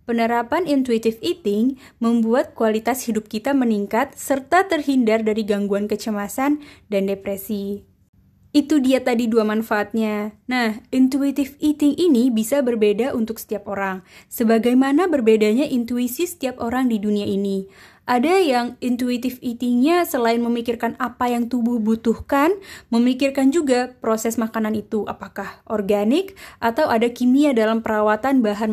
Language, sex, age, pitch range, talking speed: Indonesian, female, 20-39, 215-275 Hz, 125 wpm